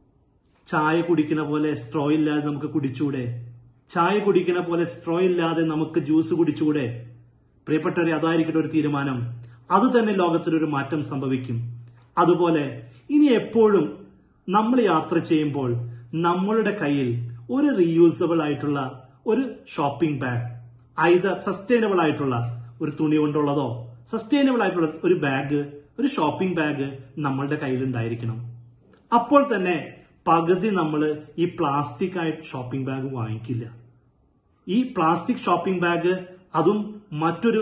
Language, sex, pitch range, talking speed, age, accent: Malayalam, male, 135-180 Hz, 105 wpm, 30-49, native